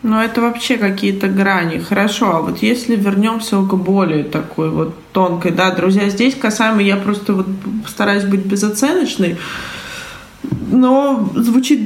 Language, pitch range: Russian, 180-225 Hz